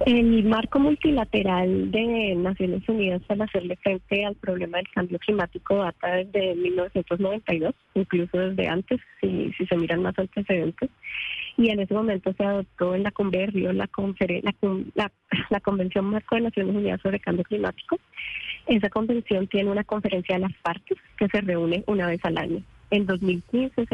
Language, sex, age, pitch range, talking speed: Spanish, female, 20-39, 180-205 Hz, 170 wpm